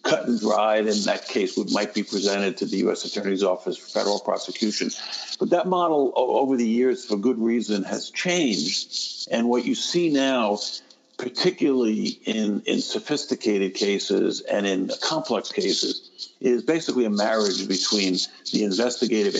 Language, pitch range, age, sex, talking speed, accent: English, 100-130 Hz, 60-79, male, 155 wpm, American